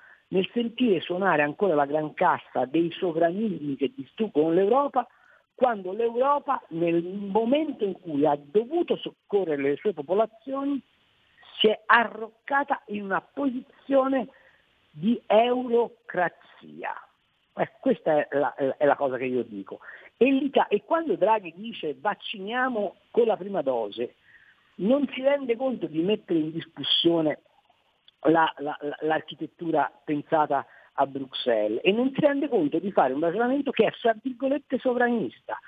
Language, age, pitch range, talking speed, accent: Italian, 50-69, 165-240 Hz, 130 wpm, native